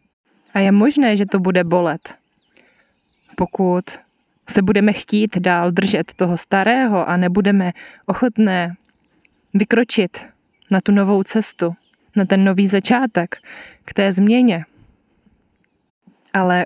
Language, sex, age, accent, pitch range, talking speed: Czech, female, 20-39, native, 180-220 Hz, 110 wpm